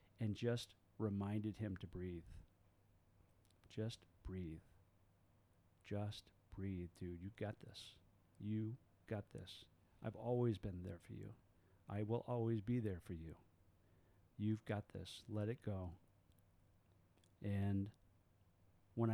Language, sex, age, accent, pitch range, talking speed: English, male, 40-59, American, 95-110 Hz, 120 wpm